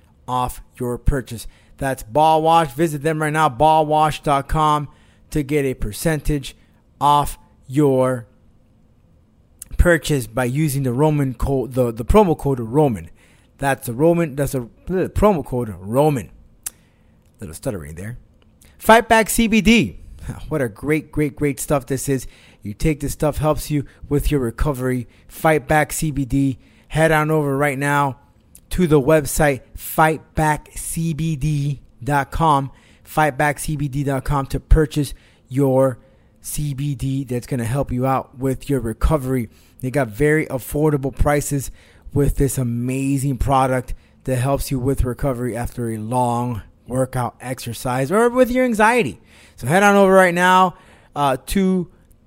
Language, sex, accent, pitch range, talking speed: English, male, American, 120-150 Hz, 135 wpm